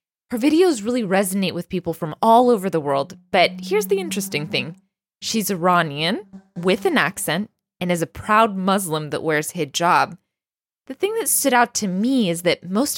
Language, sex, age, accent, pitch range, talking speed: English, female, 20-39, American, 170-235 Hz, 180 wpm